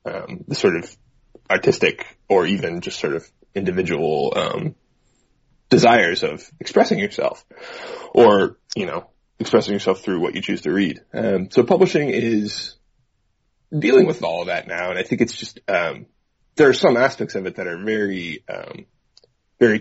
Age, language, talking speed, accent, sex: 20-39, English, 165 wpm, American, male